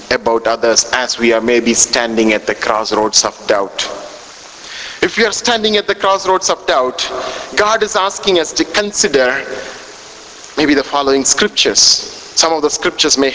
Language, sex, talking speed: English, male, 160 wpm